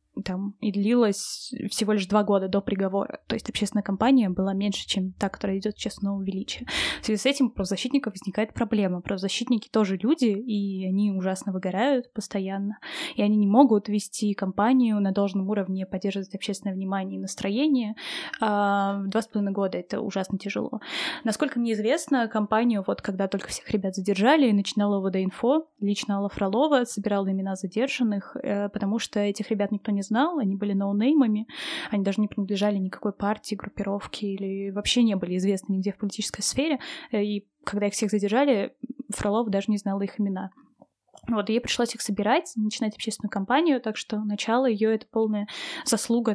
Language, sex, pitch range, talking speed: Russian, female, 200-240 Hz, 170 wpm